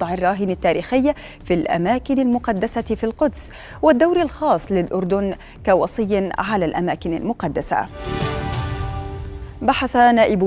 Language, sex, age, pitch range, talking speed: Arabic, female, 30-49, 185-250 Hz, 100 wpm